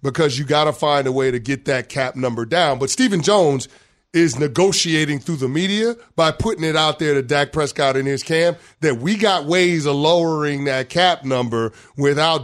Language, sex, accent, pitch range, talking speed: English, male, American, 135-170 Hz, 205 wpm